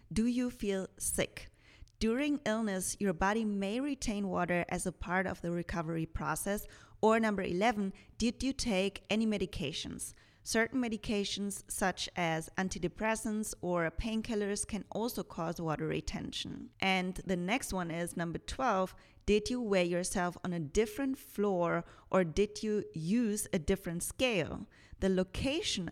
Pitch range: 175-215 Hz